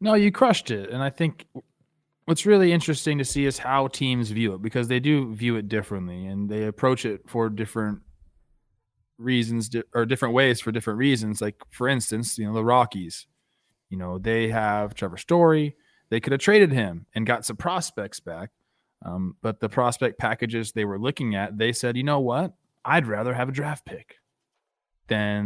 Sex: male